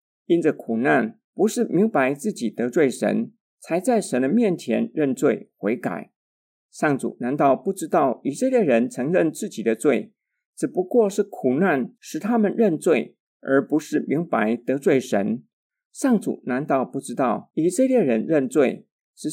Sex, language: male, Chinese